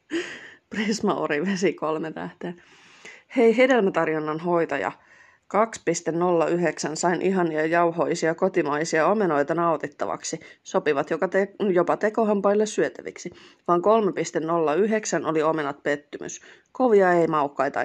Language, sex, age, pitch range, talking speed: Finnish, female, 30-49, 160-200 Hz, 95 wpm